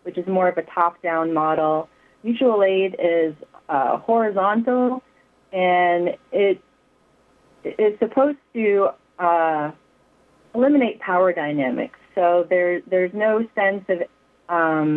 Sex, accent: female, American